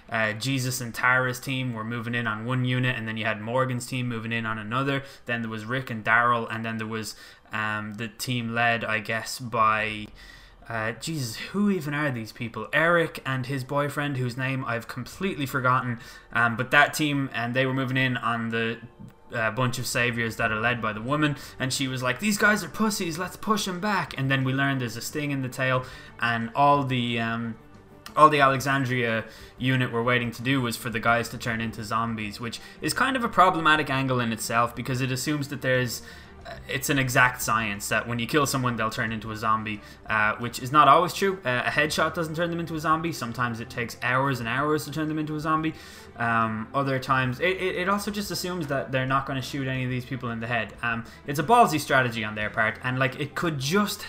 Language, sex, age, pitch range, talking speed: English, male, 10-29, 115-140 Hz, 230 wpm